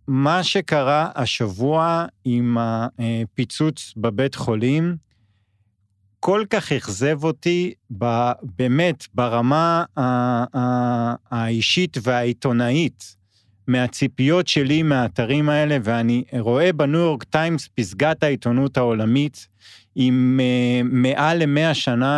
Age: 40-59